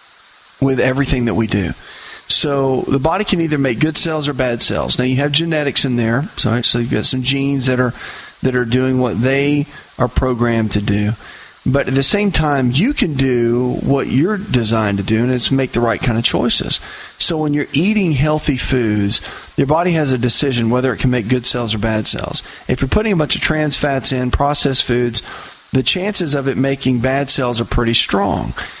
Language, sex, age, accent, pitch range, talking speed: English, male, 40-59, American, 120-140 Hz, 210 wpm